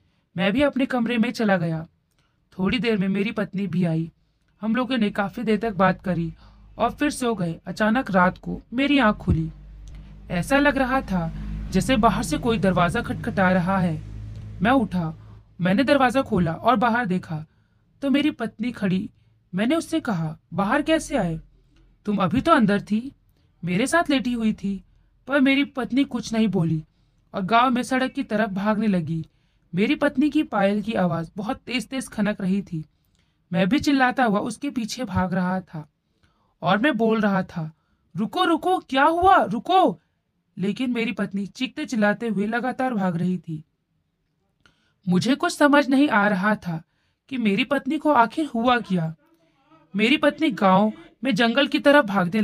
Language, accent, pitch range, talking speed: Hindi, native, 180-265 Hz, 170 wpm